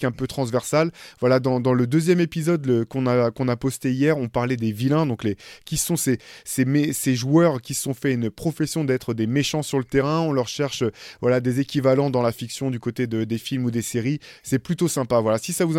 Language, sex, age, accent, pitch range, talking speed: French, male, 20-39, French, 125-155 Hz, 245 wpm